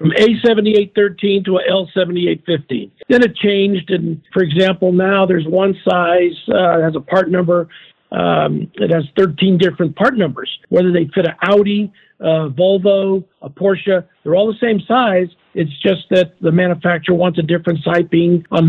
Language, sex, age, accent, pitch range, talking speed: English, male, 50-69, American, 165-195 Hz, 165 wpm